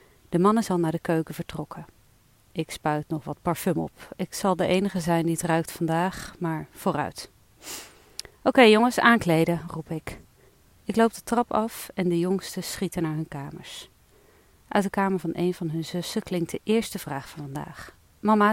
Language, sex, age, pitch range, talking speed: Dutch, female, 40-59, 160-205 Hz, 185 wpm